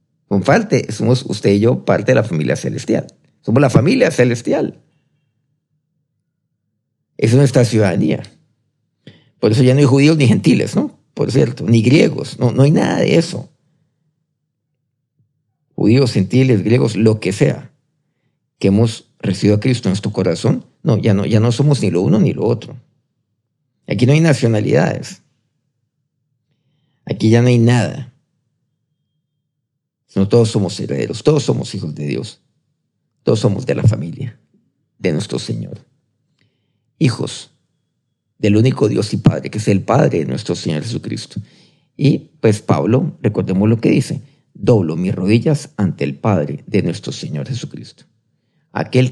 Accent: Mexican